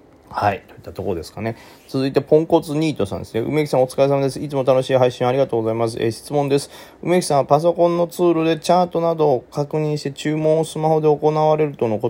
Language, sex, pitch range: Japanese, male, 115-155 Hz